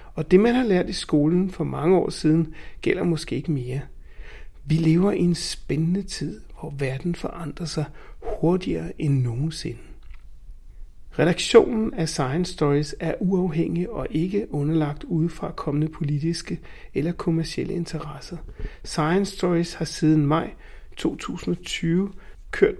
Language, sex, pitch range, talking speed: Danish, male, 155-185 Hz, 130 wpm